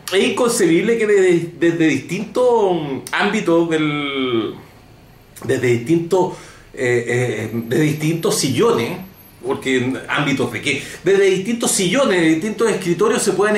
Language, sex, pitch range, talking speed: Spanish, male, 130-200 Hz, 125 wpm